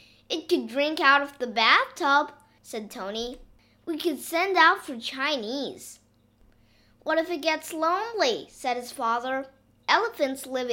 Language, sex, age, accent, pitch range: Chinese, female, 20-39, American, 235-335 Hz